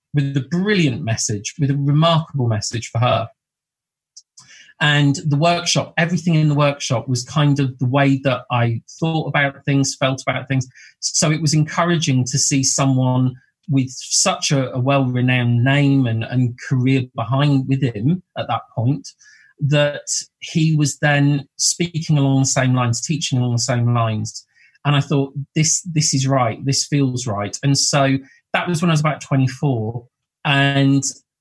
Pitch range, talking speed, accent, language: 125-145 Hz, 165 wpm, British, English